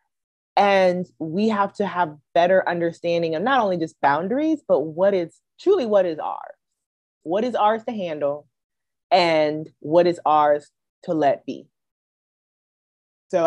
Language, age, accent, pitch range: English, 30-49, American, 150-200 Hz